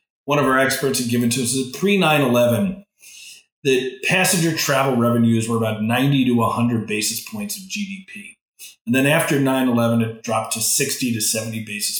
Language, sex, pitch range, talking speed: English, male, 115-140 Hz, 170 wpm